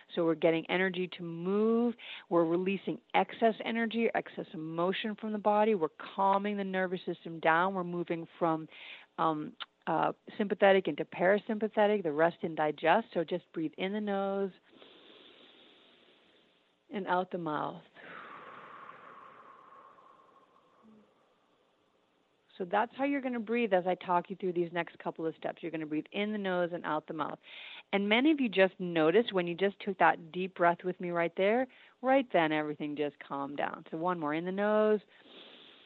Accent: American